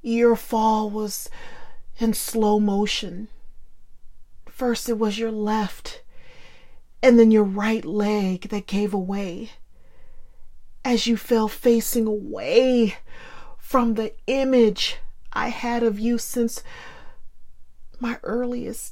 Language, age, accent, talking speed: English, 40-59, American, 110 wpm